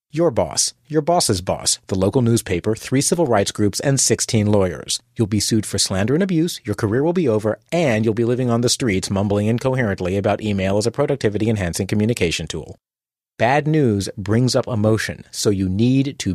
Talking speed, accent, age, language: 190 wpm, American, 40-59, English